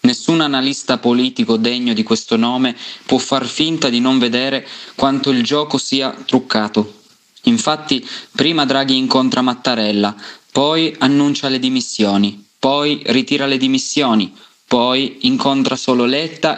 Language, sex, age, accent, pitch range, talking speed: Italian, male, 20-39, native, 125-150 Hz, 125 wpm